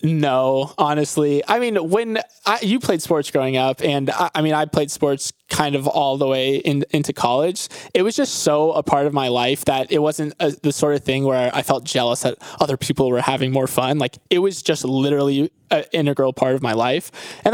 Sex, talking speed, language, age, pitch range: male, 225 wpm, English, 20-39, 135-160 Hz